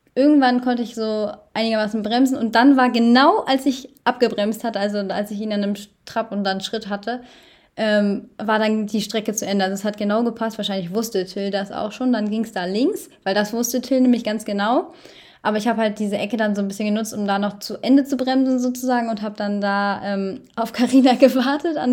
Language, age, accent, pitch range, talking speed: German, 20-39, German, 210-265 Hz, 225 wpm